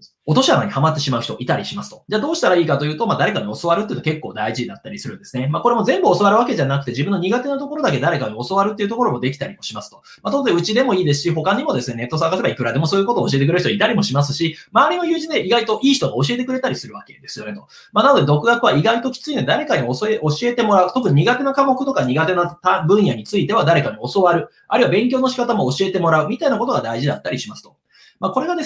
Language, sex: Japanese, male